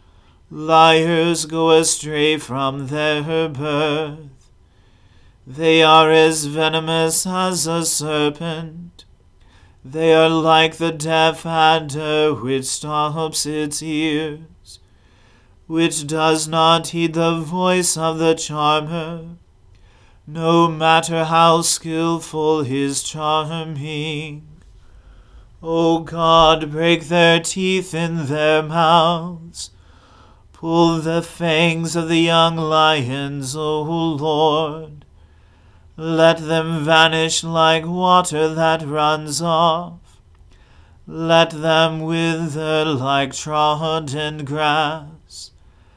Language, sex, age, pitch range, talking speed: English, male, 40-59, 150-165 Hz, 90 wpm